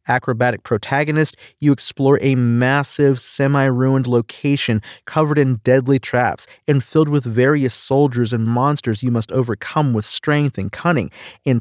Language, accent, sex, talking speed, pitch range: English, American, male, 140 wpm, 115-145 Hz